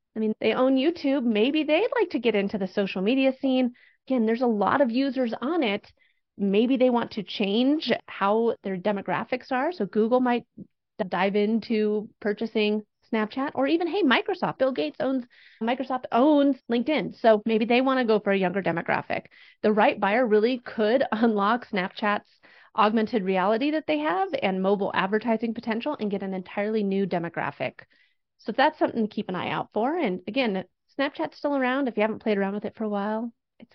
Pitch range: 205-265 Hz